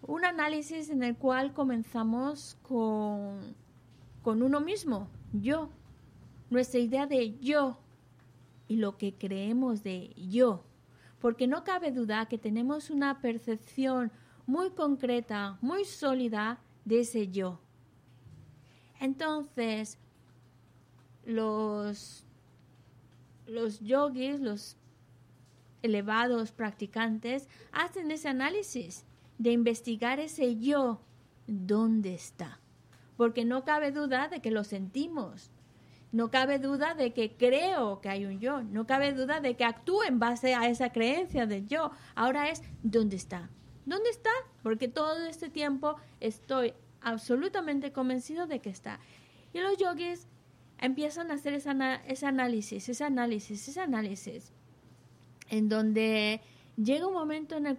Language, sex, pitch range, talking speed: Spanish, female, 205-280 Hz, 125 wpm